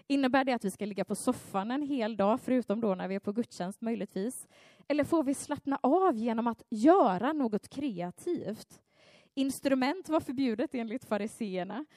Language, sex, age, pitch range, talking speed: Swedish, female, 20-39, 200-285 Hz, 170 wpm